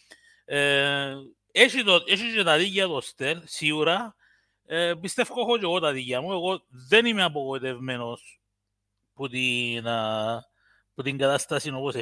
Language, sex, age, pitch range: English, male, 30-49, 135-220 Hz